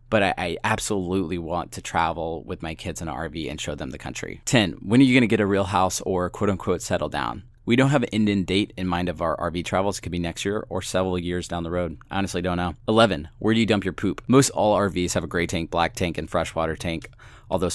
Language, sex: English, male